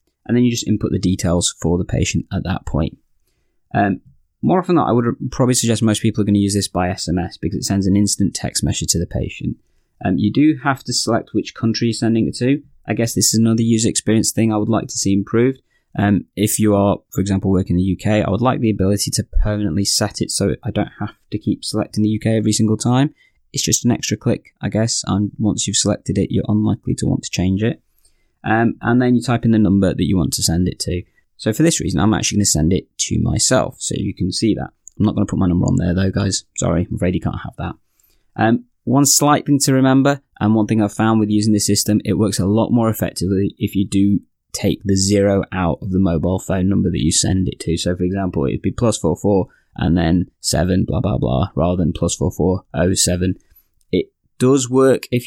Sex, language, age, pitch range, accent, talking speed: male, English, 20-39, 95-115 Hz, British, 255 wpm